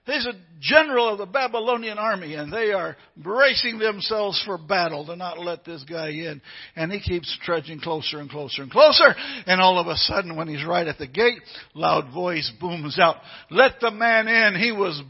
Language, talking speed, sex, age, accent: English, 200 wpm, male, 60-79, American